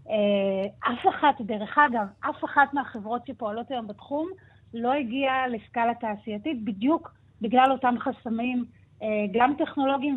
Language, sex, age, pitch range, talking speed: Hebrew, female, 30-49, 215-270 Hz, 120 wpm